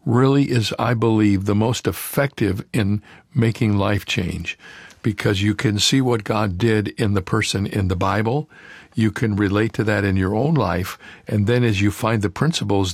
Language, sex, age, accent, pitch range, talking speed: English, male, 60-79, American, 100-120 Hz, 185 wpm